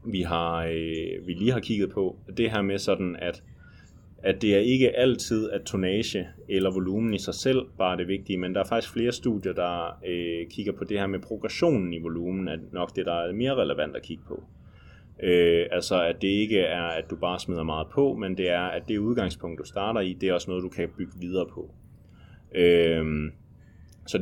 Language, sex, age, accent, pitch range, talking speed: English, male, 30-49, Danish, 90-110 Hz, 215 wpm